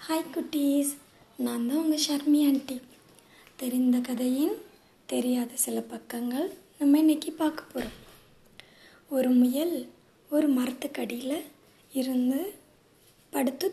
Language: Tamil